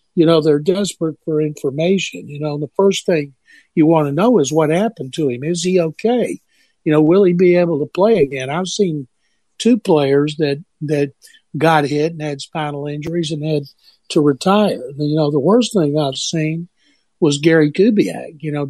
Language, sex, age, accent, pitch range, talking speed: English, male, 60-79, American, 150-175 Hz, 195 wpm